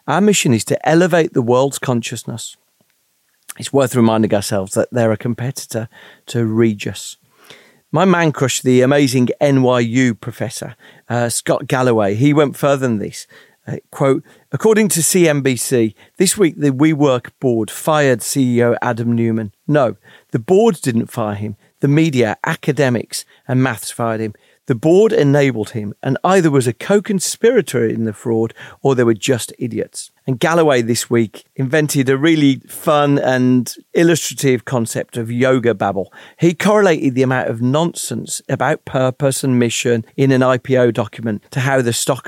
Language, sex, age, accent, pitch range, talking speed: English, male, 40-59, British, 115-150 Hz, 155 wpm